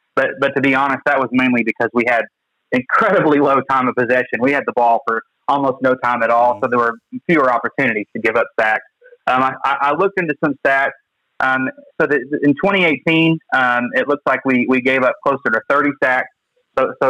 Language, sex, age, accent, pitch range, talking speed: English, male, 30-49, American, 120-145 Hz, 210 wpm